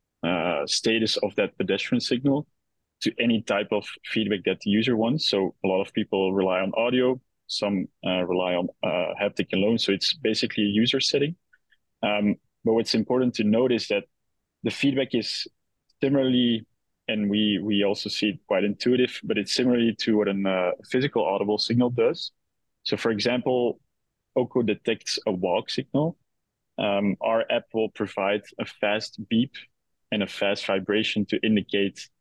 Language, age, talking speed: English, 20-39, 165 wpm